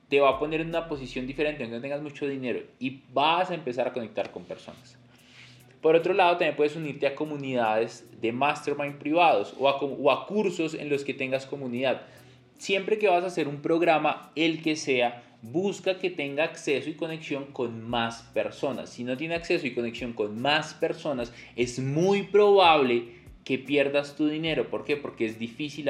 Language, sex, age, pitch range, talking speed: Spanish, male, 20-39, 120-160 Hz, 190 wpm